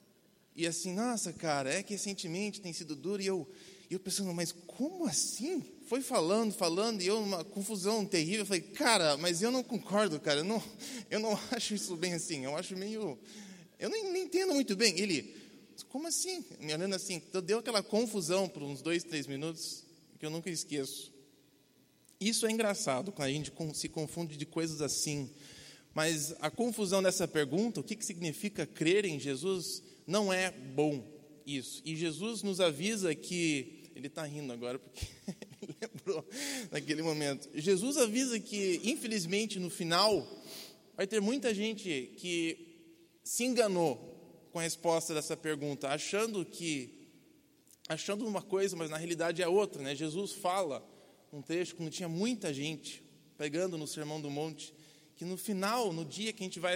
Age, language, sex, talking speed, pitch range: 20-39, Portuguese, male, 170 wpm, 160-210 Hz